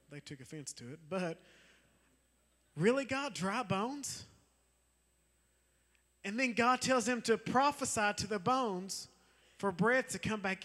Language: English